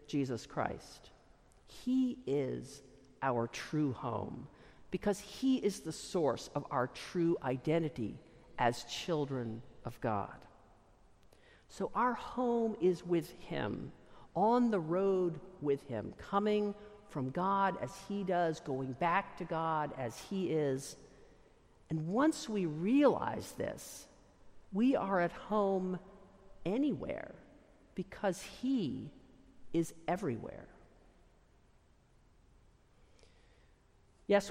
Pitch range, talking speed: 130-195 Hz, 105 wpm